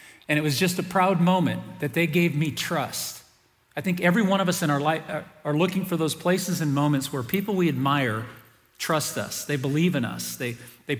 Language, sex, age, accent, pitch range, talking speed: English, male, 40-59, American, 135-175 Hz, 220 wpm